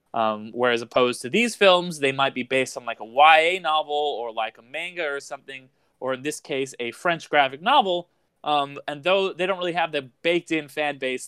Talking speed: 220 wpm